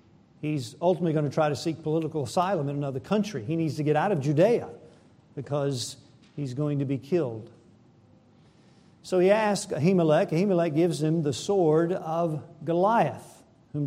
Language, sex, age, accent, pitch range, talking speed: English, male, 50-69, American, 150-205 Hz, 160 wpm